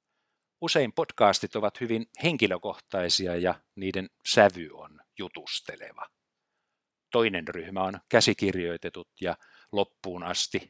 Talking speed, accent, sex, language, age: 95 wpm, native, male, Finnish, 50-69